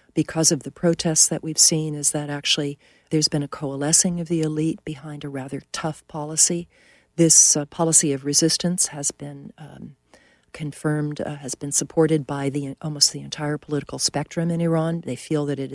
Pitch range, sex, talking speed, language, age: 145-165 Hz, female, 185 wpm, English, 40-59